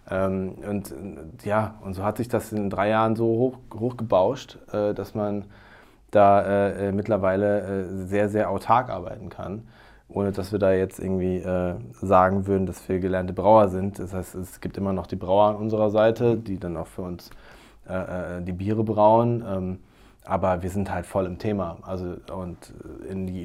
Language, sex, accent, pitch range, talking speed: German, male, German, 95-110 Hz, 180 wpm